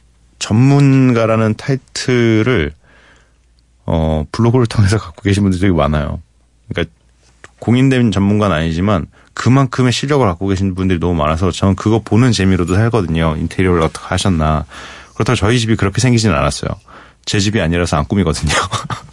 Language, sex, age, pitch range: Korean, male, 30-49, 85-120 Hz